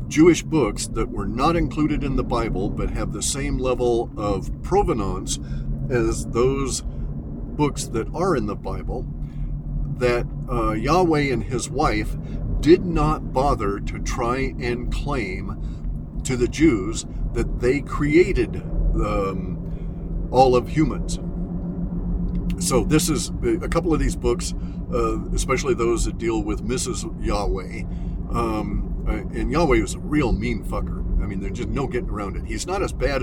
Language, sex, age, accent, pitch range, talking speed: English, male, 50-69, American, 90-145 Hz, 150 wpm